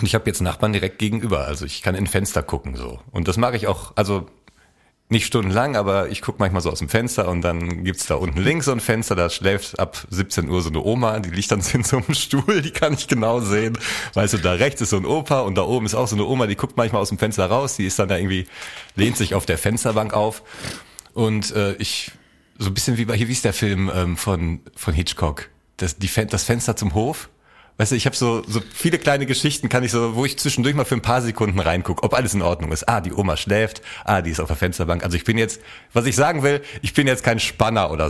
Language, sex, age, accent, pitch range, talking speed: German, male, 40-59, German, 95-130 Hz, 265 wpm